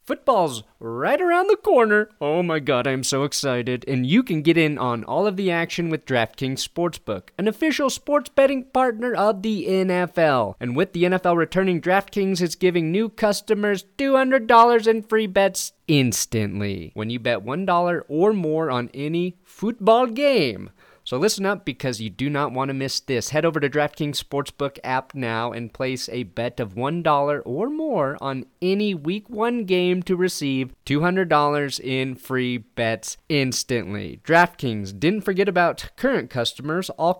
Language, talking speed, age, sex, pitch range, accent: English, 165 wpm, 30-49, male, 120-185 Hz, American